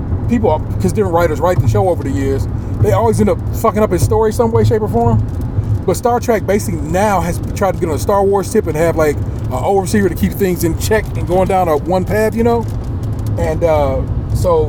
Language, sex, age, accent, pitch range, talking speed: English, male, 30-49, American, 105-140 Hz, 235 wpm